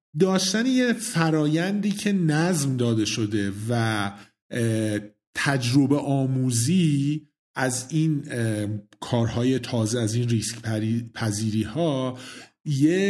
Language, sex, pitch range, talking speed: Persian, male, 115-150 Hz, 85 wpm